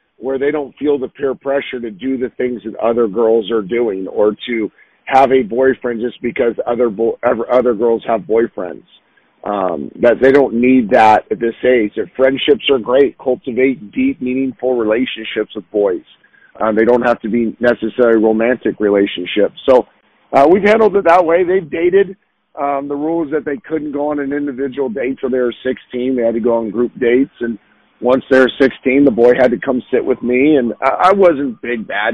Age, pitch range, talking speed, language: 50-69, 115-140 Hz, 200 wpm, English